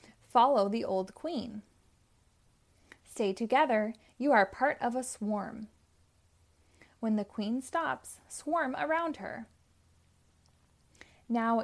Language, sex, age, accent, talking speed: English, female, 20-39, American, 105 wpm